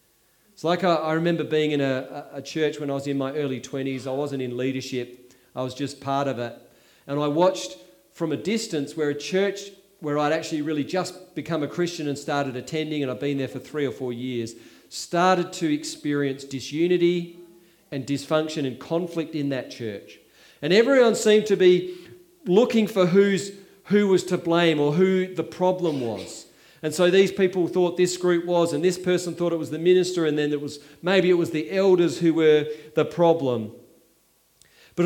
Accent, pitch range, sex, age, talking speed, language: Australian, 145-185 Hz, male, 40-59, 195 wpm, English